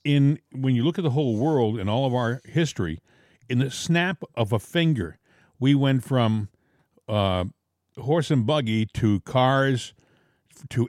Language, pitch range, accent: English, 115-150 Hz, American